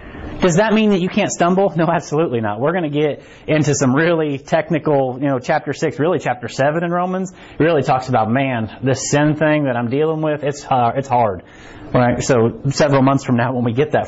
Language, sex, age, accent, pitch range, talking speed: English, male, 30-49, American, 130-175 Hz, 225 wpm